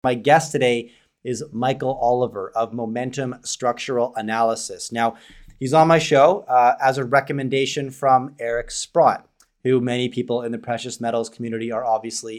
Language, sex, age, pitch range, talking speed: English, male, 30-49, 120-140 Hz, 155 wpm